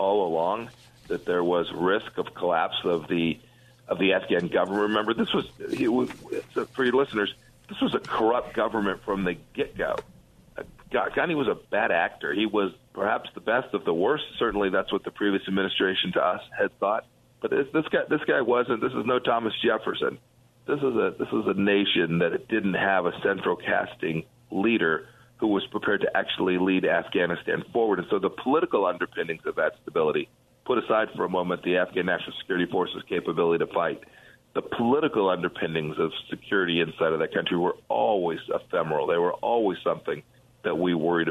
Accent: American